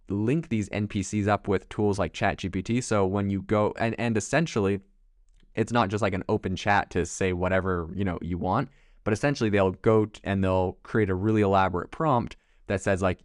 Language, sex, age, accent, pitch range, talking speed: English, male, 20-39, American, 95-110 Hz, 195 wpm